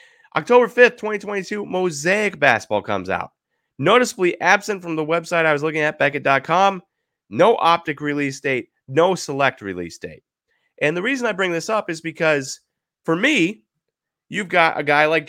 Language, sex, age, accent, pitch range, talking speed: English, male, 30-49, American, 140-190 Hz, 160 wpm